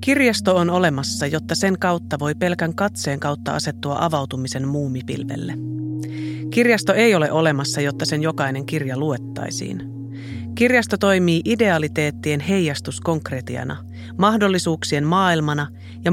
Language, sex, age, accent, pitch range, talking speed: Finnish, female, 30-49, native, 125-175 Hz, 110 wpm